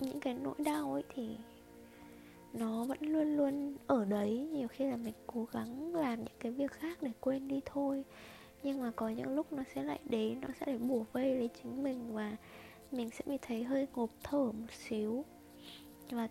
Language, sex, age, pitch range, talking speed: Vietnamese, female, 10-29, 225-275 Hz, 200 wpm